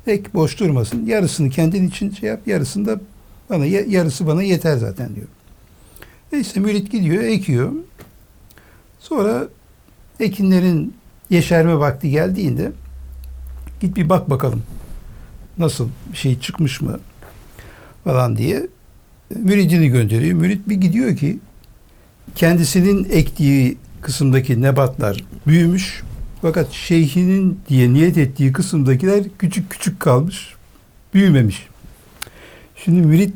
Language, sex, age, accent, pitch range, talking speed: Turkish, male, 60-79, native, 120-180 Hz, 105 wpm